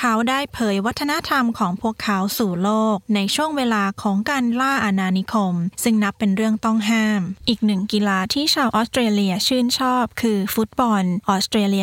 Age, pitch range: 10-29, 195-240 Hz